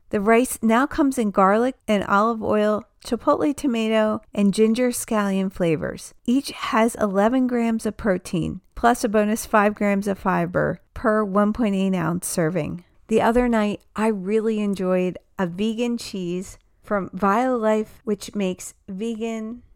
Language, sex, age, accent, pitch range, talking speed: English, female, 40-59, American, 190-230 Hz, 145 wpm